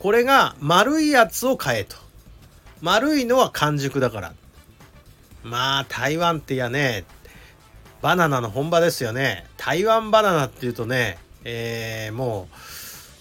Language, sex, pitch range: Japanese, male, 125-205 Hz